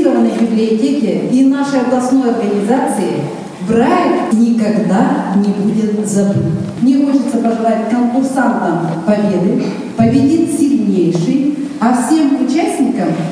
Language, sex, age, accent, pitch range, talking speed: Russian, female, 20-39, native, 175-255 Hz, 90 wpm